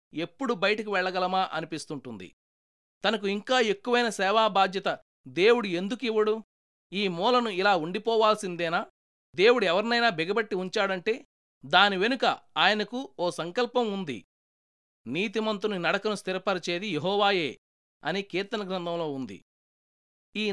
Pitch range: 175-225 Hz